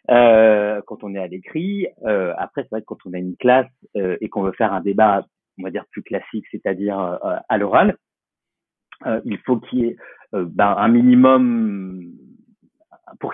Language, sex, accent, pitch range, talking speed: French, male, French, 95-125 Hz, 195 wpm